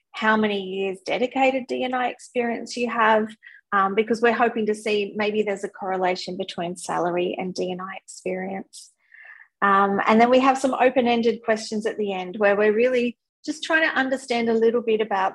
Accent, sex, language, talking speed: Australian, female, English, 175 wpm